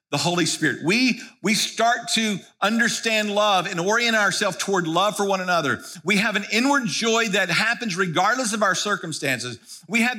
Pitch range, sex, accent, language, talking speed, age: 175-230 Hz, male, American, English, 175 wpm, 50-69